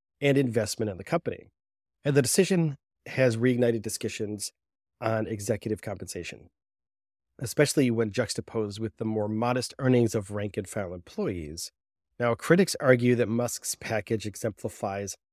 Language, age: English, 30-49